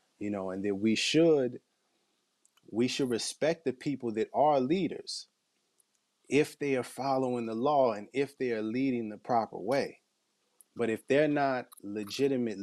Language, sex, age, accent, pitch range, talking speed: English, male, 30-49, American, 110-130 Hz, 155 wpm